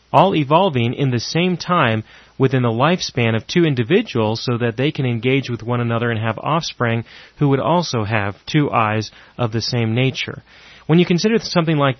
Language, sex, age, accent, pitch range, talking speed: English, male, 30-49, American, 115-150 Hz, 190 wpm